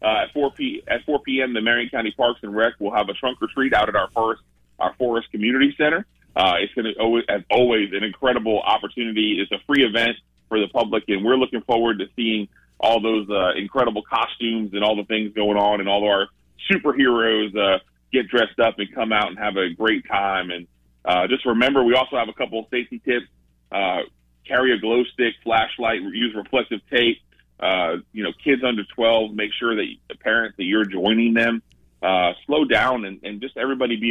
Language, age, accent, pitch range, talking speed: English, 30-49, American, 100-120 Hz, 210 wpm